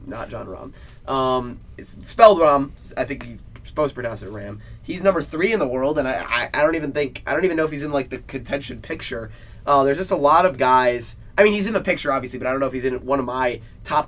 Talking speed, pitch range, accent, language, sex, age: 275 wpm, 120-150 Hz, American, English, male, 20-39